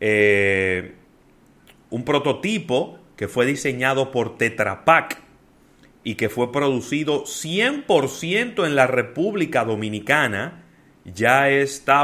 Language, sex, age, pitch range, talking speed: Spanish, male, 30-49, 105-140 Hz, 95 wpm